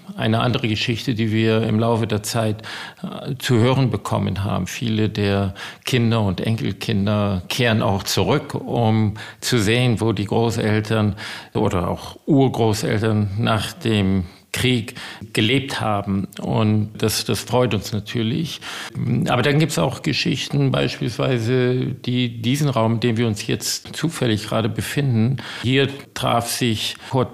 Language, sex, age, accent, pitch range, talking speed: German, male, 50-69, German, 110-125 Hz, 140 wpm